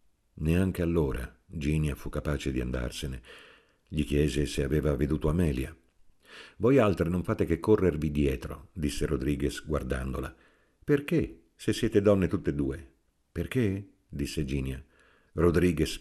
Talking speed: 125 wpm